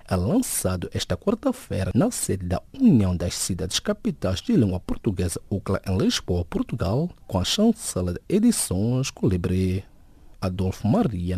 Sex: male